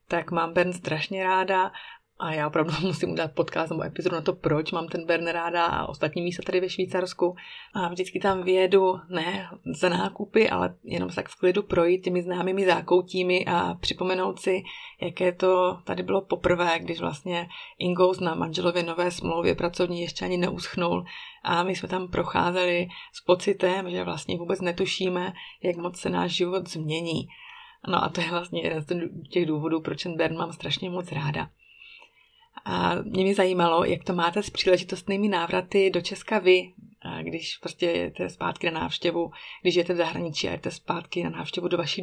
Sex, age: female, 30-49